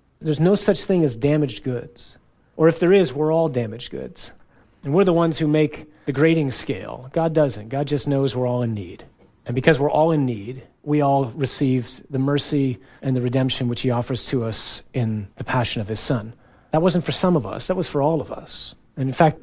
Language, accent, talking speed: English, American, 225 wpm